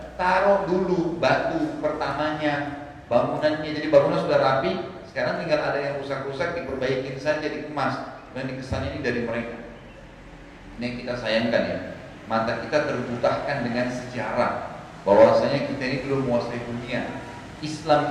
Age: 40-59